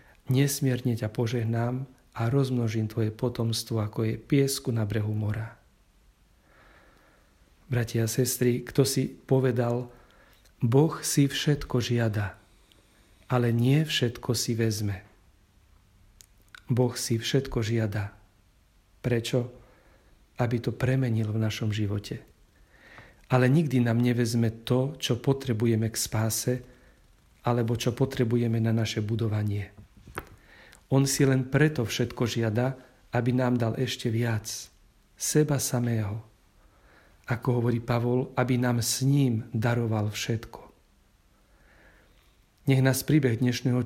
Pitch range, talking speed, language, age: 110-125 Hz, 110 wpm, Slovak, 40-59